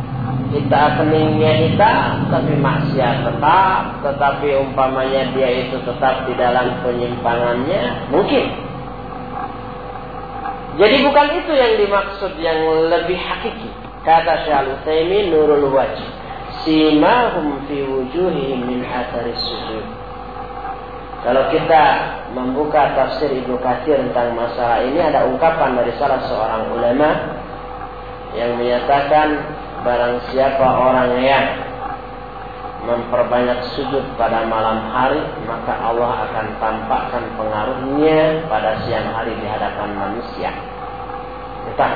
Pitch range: 125-155 Hz